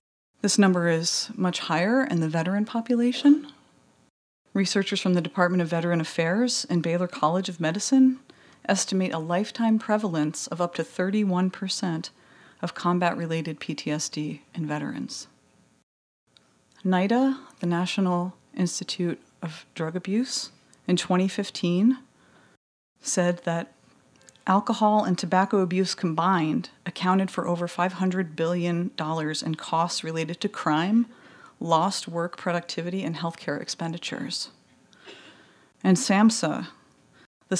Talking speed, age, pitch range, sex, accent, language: 110 wpm, 30-49, 165-195 Hz, female, American, English